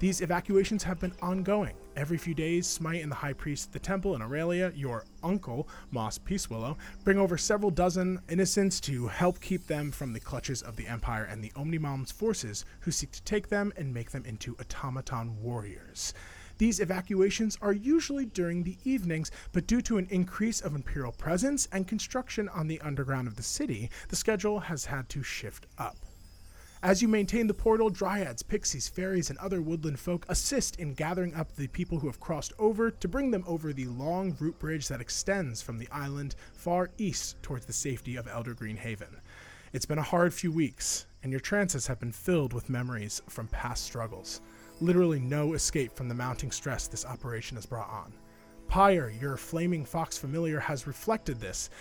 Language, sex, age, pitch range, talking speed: English, male, 30-49, 120-185 Hz, 190 wpm